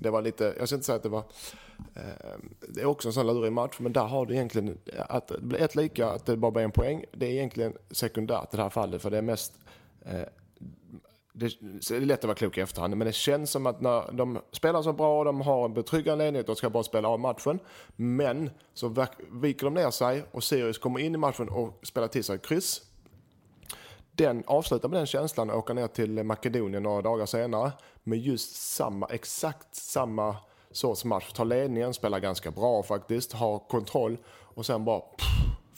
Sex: male